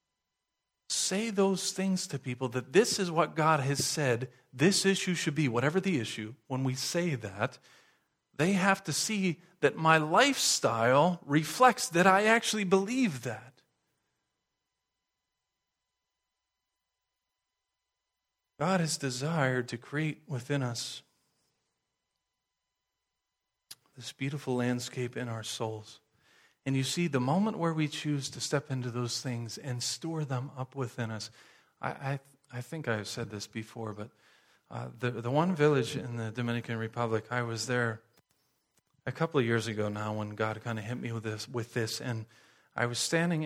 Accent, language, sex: American, English, male